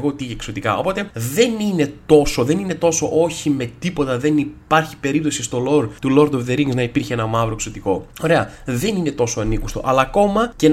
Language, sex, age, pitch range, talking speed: Greek, male, 20-39, 115-155 Hz, 185 wpm